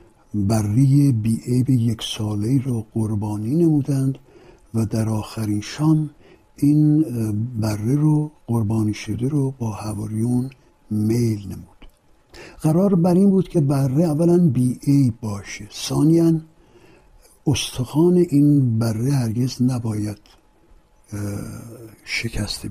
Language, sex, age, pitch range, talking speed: Persian, male, 60-79, 110-150 Hz, 100 wpm